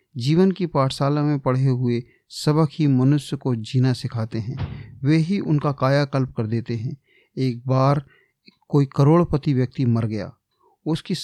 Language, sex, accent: Hindi, male, native